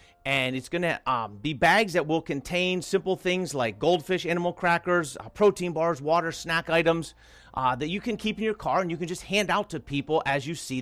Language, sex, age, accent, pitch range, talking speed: English, male, 40-59, American, 130-175 Hz, 220 wpm